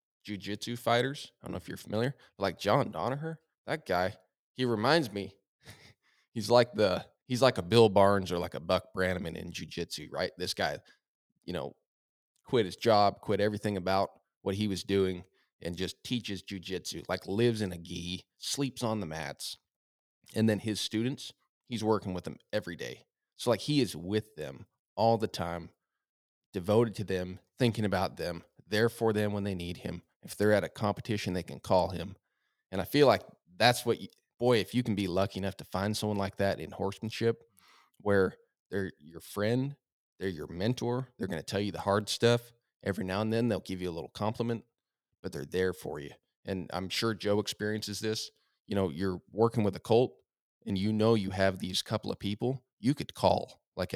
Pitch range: 95-115 Hz